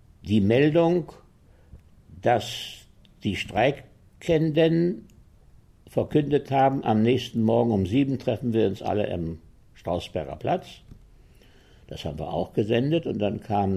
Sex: male